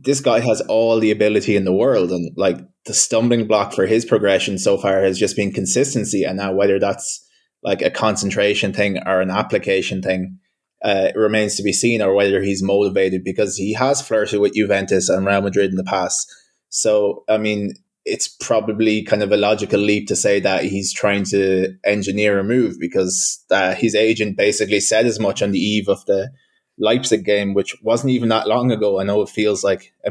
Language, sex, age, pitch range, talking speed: English, male, 20-39, 100-115 Hz, 205 wpm